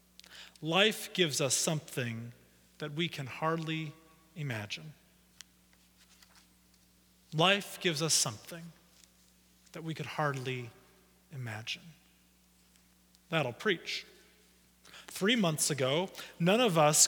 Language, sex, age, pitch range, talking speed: English, male, 30-49, 115-180 Hz, 90 wpm